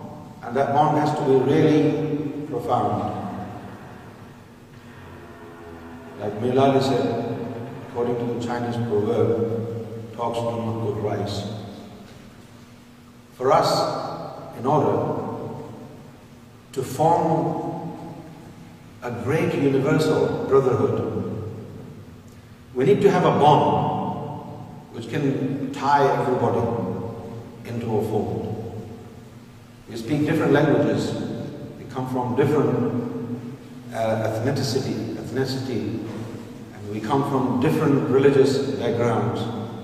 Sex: male